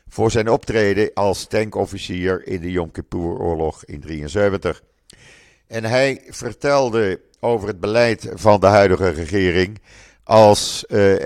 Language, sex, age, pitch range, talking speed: Dutch, male, 50-69, 90-115 Hz, 125 wpm